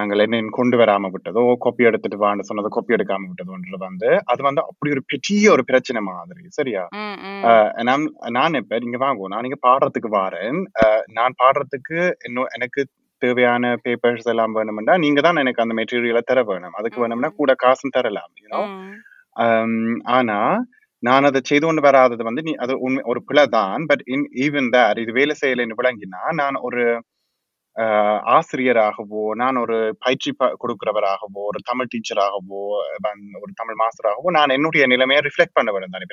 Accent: native